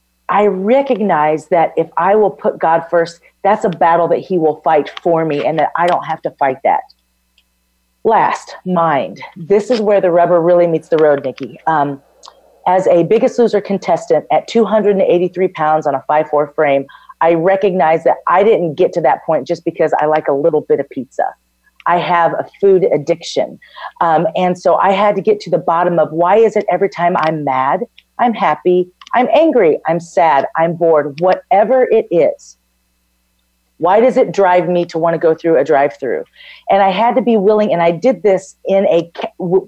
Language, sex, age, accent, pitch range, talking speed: English, female, 40-59, American, 165-215 Hz, 195 wpm